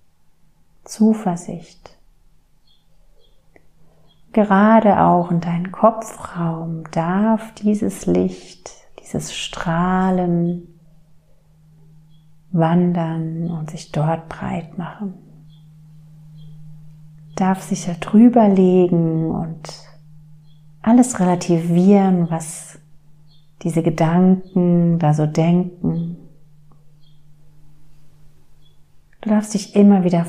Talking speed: 70 wpm